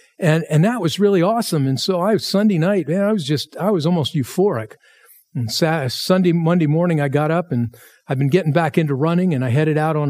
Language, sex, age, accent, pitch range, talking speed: English, male, 50-69, American, 140-190 Hz, 240 wpm